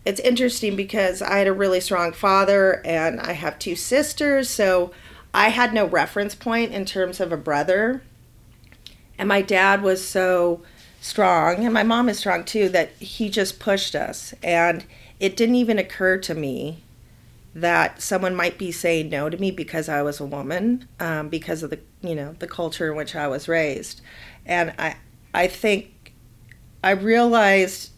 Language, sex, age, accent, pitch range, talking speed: English, female, 40-59, American, 160-195 Hz, 175 wpm